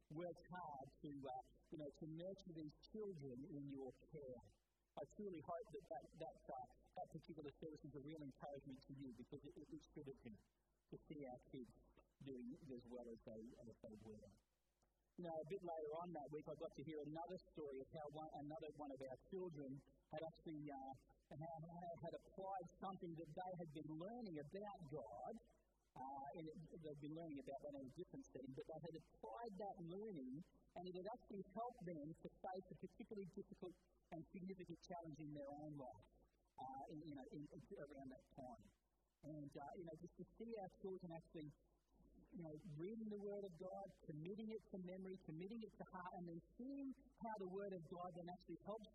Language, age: English, 50-69